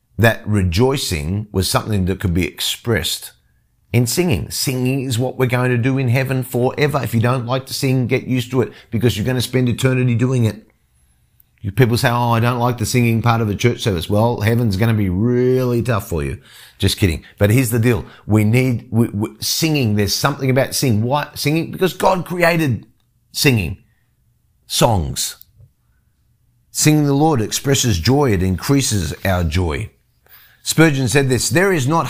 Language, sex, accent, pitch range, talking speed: English, male, Australian, 105-130 Hz, 180 wpm